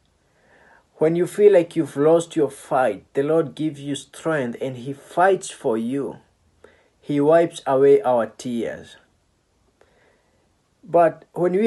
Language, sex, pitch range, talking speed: English, male, 130-165 Hz, 135 wpm